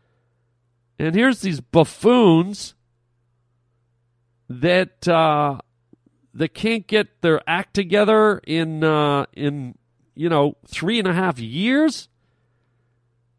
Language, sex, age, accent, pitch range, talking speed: English, male, 40-59, American, 120-190 Hz, 100 wpm